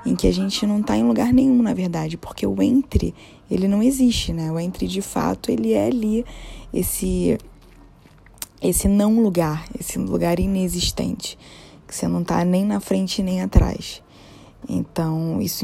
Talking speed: 160 wpm